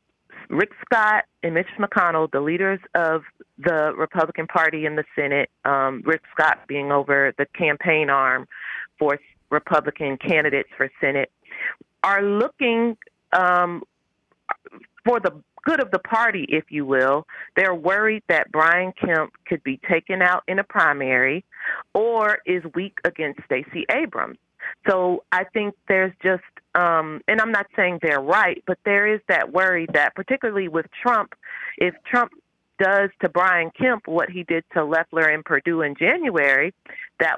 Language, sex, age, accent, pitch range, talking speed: English, female, 40-59, American, 155-200 Hz, 150 wpm